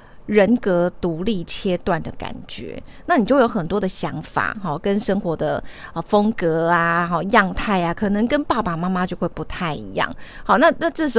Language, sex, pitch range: Chinese, female, 175-230 Hz